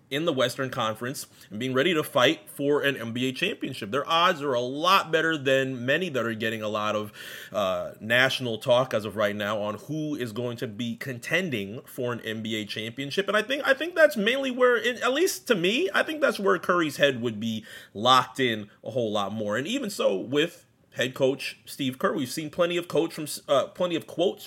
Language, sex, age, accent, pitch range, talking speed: English, male, 30-49, American, 125-190 Hz, 220 wpm